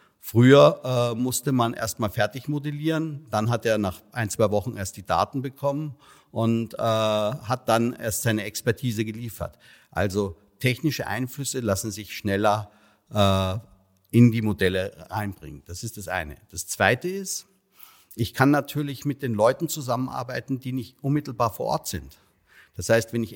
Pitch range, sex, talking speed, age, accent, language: 100-130 Hz, male, 160 wpm, 50-69, German, German